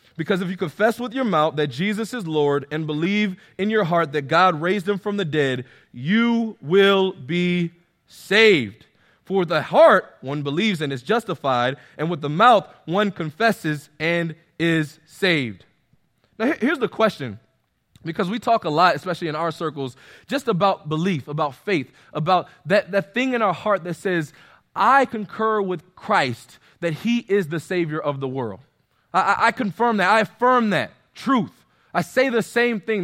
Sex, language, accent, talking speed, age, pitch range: male, English, American, 175 wpm, 20-39, 150-220 Hz